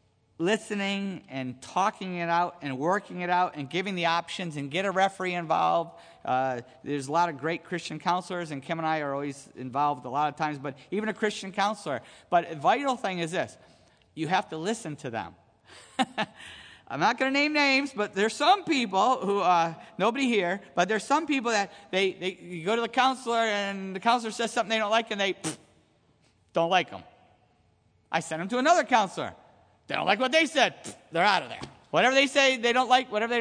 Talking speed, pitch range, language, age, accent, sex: 210 wpm, 155-220 Hz, English, 50-69, American, male